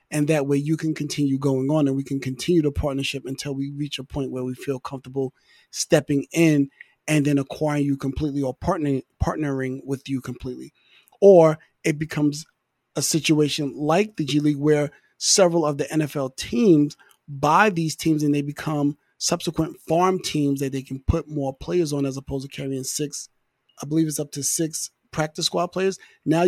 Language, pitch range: English, 140-165 Hz